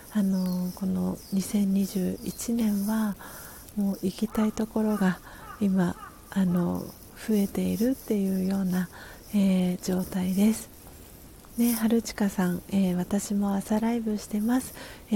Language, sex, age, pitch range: Japanese, female, 40-59, 185-215 Hz